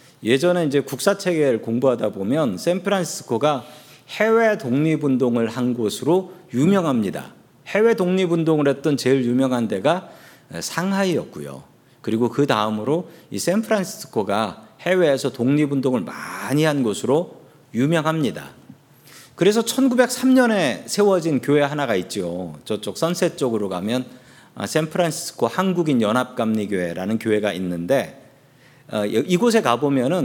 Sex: male